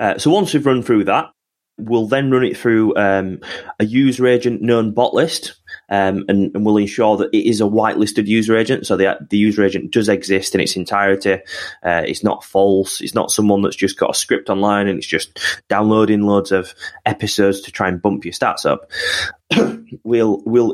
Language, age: English, 20-39